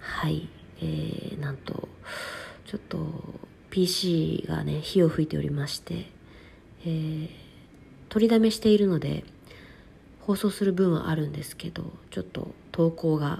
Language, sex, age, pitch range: Japanese, female, 40-59, 135-180 Hz